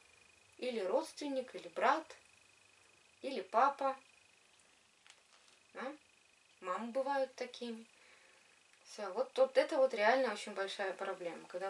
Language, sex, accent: Russian, female, native